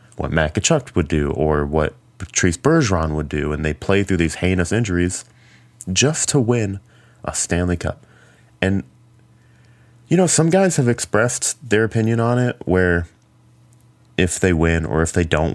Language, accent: English, American